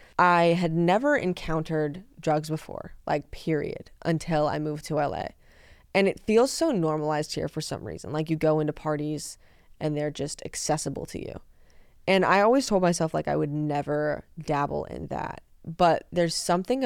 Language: English